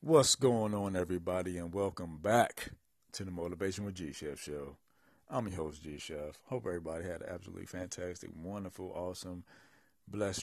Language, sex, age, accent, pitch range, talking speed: English, male, 40-59, American, 85-100 Hz, 160 wpm